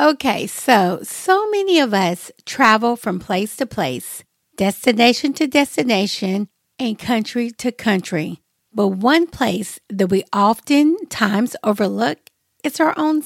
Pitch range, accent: 220-300 Hz, American